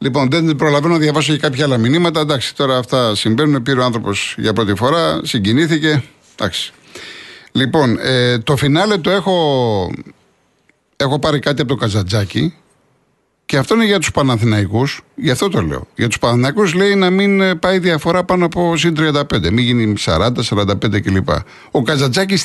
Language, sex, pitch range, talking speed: Greek, male, 115-160 Hz, 165 wpm